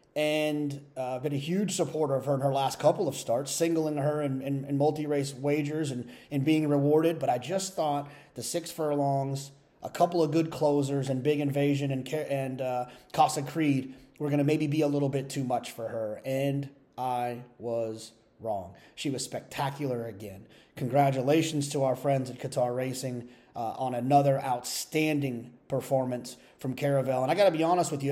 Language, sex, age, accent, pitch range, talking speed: English, male, 30-49, American, 135-160 Hz, 185 wpm